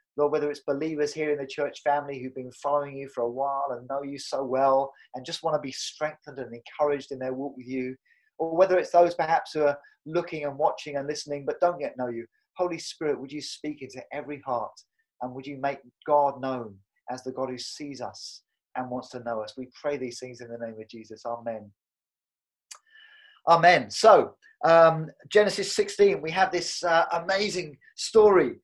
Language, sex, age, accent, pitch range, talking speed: English, male, 30-49, British, 135-170 Hz, 205 wpm